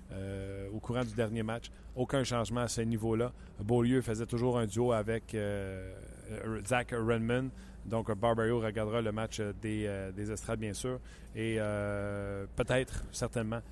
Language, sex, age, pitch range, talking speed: French, male, 30-49, 110-130 Hz, 155 wpm